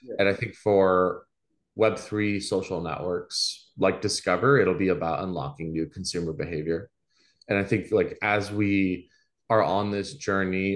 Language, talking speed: English, 150 wpm